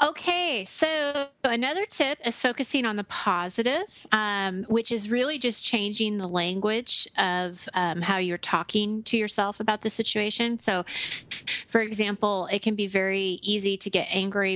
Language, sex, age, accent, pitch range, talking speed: English, female, 30-49, American, 185-235 Hz, 155 wpm